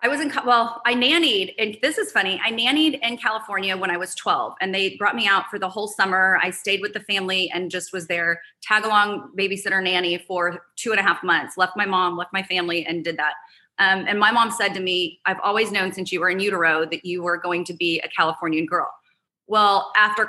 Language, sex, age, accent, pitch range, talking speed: English, female, 30-49, American, 175-205 Hz, 240 wpm